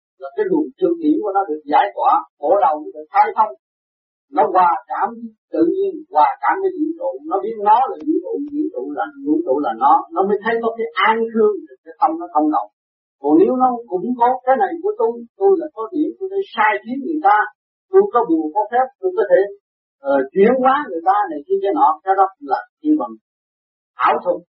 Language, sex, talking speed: Vietnamese, male, 230 wpm